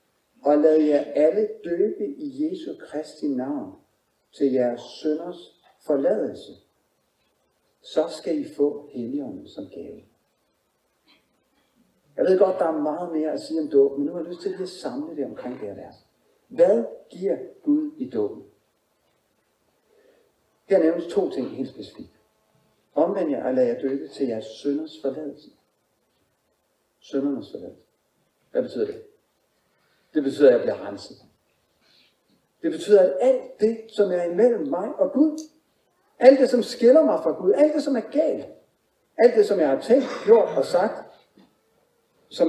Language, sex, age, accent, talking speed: Danish, male, 60-79, native, 155 wpm